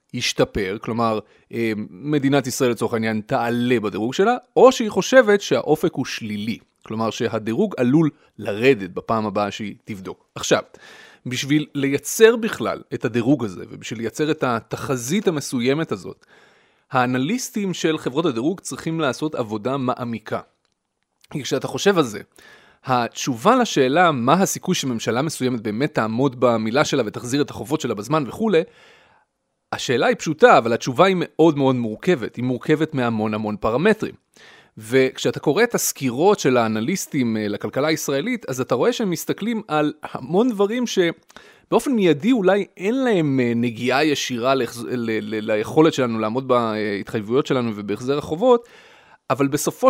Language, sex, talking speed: Hebrew, male, 135 wpm